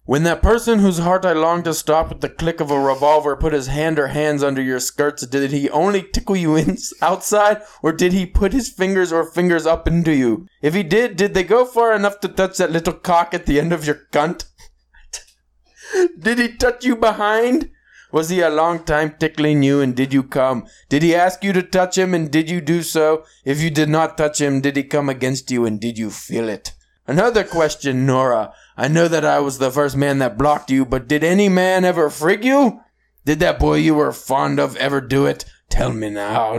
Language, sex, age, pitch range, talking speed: English, male, 20-39, 140-185 Hz, 225 wpm